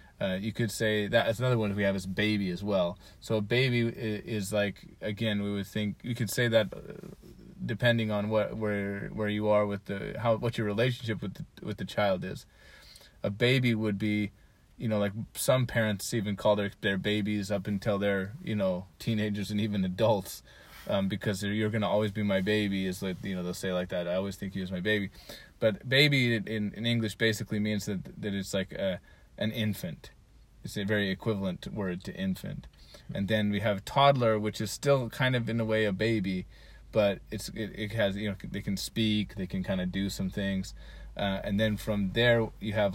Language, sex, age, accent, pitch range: Japanese, male, 20-39, American, 100-115 Hz